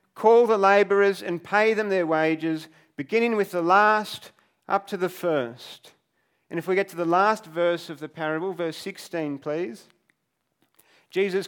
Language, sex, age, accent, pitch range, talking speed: English, male, 40-59, Australian, 160-195 Hz, 160 wpm